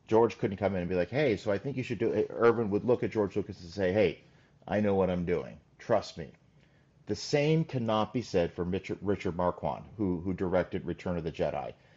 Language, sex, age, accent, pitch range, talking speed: Dutch, male, 40-59, American, 90-115 Hz, 230 wpm